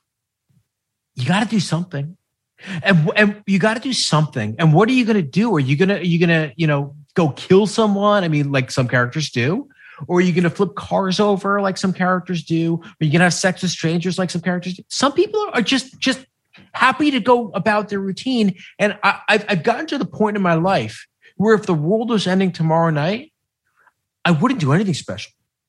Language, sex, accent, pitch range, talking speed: English, male, American, 135-205 Hz, 220 wpm